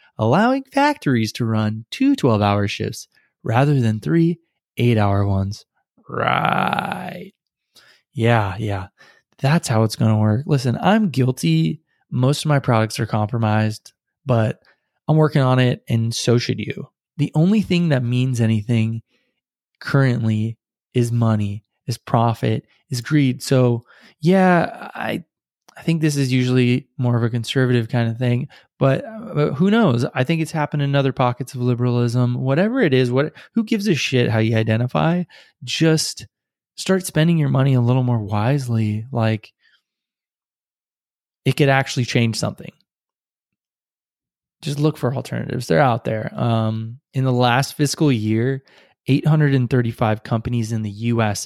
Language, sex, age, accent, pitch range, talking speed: English, male, 20-39, American, 115-145 Hz, 150 wpm